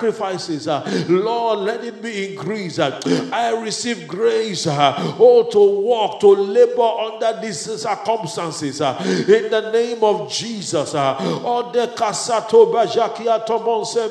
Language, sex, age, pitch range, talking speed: English, male, 50-69, 220-235 Hz, 125 wpm